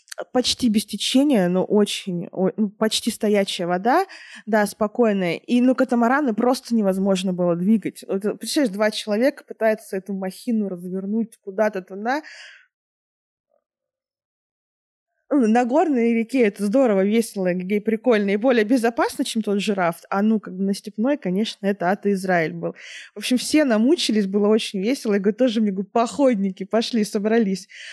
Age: 20-39